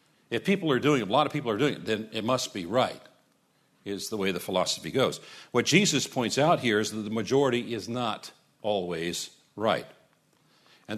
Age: 50-69